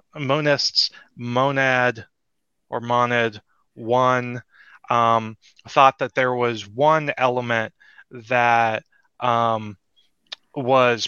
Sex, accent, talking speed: male, American, 80 wpm